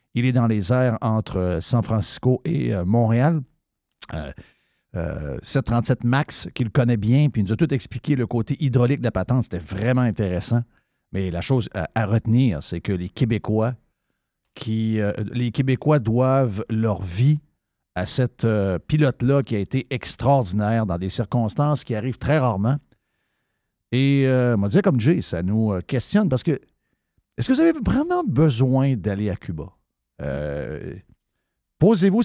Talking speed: 160 wpm